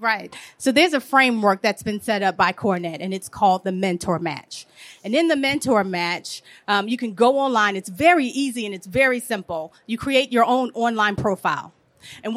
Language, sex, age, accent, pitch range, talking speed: English, female, 30-49, American, 215-290 Hz, 200 wpm